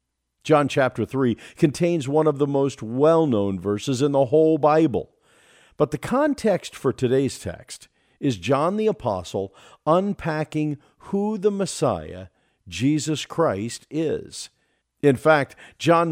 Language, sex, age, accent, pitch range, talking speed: English, male, 50-69, American, 110-160 Hz, 125 wpm